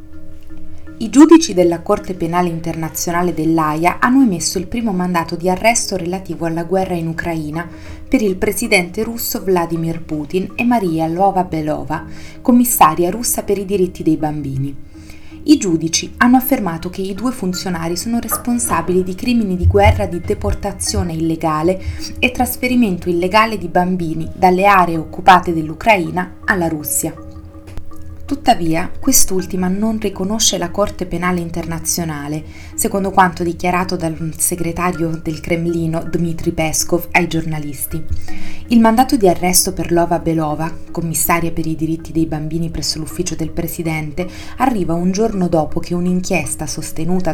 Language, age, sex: Italian, 30-49, female